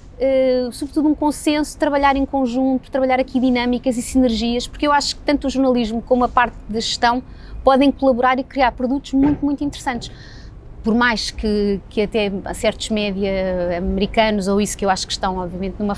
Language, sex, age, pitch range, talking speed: Portuguese, female, 20-39, 210-255 Hz, 190 wpm